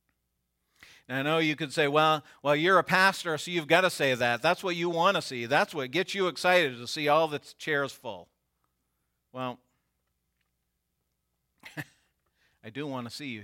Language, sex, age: English, male, 50-69